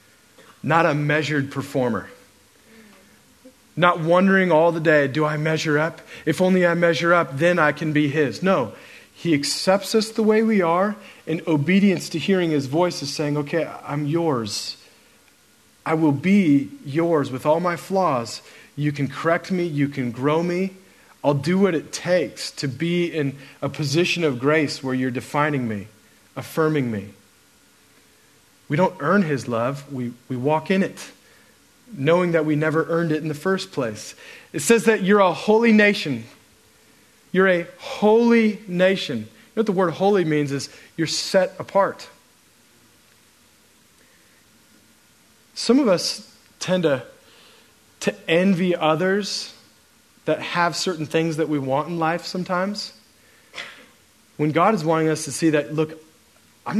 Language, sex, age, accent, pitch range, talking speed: English, male, 40-59, American, 145-185 Hz, 150 wpm